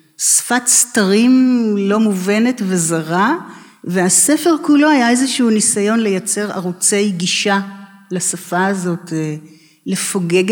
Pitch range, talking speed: 175-220 Hz, 90 wpm